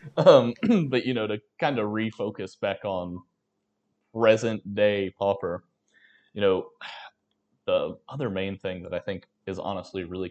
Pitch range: 90-115 Hz